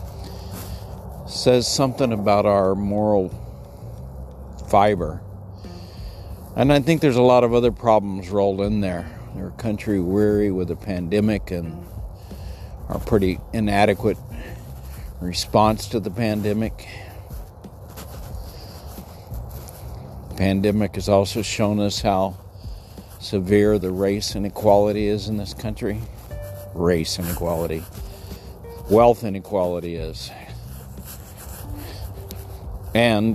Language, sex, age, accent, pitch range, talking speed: English, male, 50-69, American, 90-105 Hz, 100 wpm